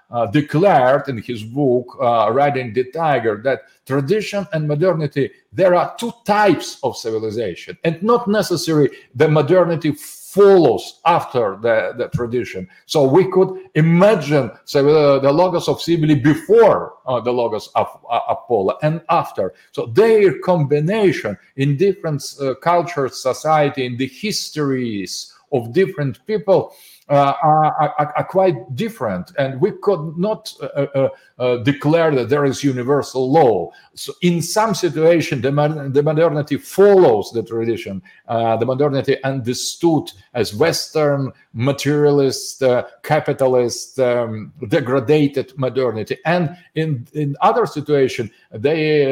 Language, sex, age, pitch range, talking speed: Arabic, male, 50-69, 130-170 Hz, 135 wpm